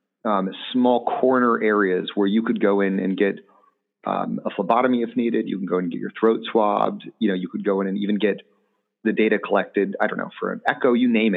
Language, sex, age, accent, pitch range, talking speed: English, male, 30-49, American, 100-115 Hz, 240 wpm